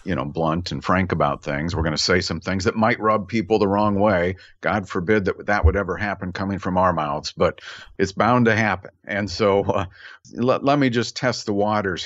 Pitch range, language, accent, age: 90-110 Hz, English, American, 50-69